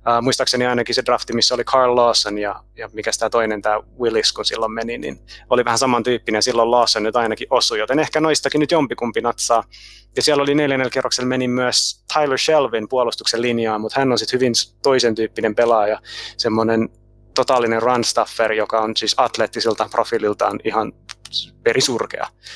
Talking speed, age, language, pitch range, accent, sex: 170 wpm, 30-49, Finnish, 115-135 Hz, native, male